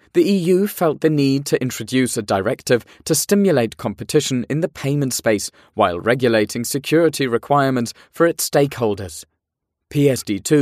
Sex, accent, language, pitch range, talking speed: male, British, English, 115-150 Hz, 135 wpm